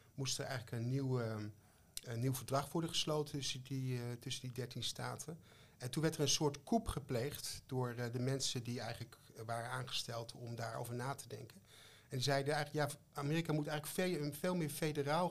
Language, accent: Dutch, Dutch